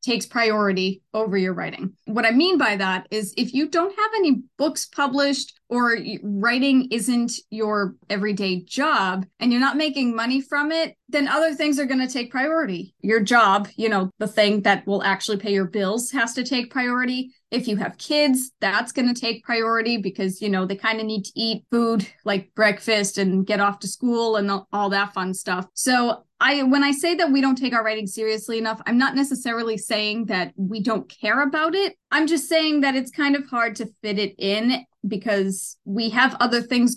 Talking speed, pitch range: 205 wpm, 205-270 Hz